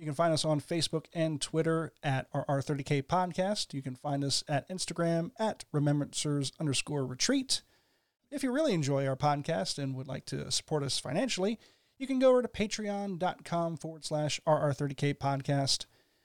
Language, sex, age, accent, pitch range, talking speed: English, male, 40-59, American, 140-185 Hz, 165 wpm